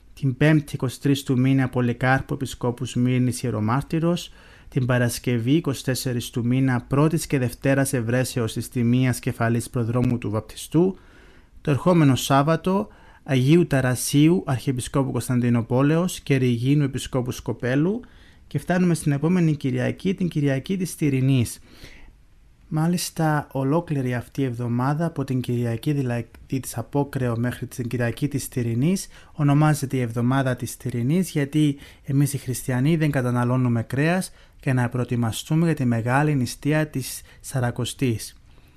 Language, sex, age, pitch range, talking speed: Greek, male, 30-49, 120-150 Hz, 125 wpm